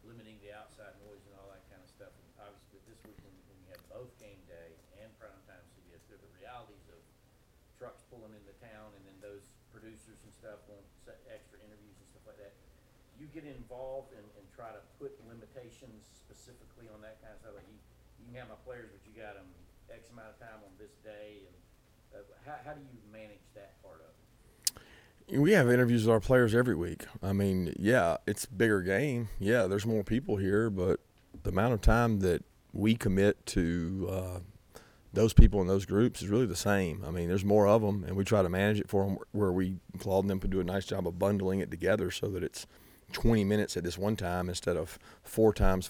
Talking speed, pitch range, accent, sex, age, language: 220 wpm, 95-115 Hz, American, male, 40-59, English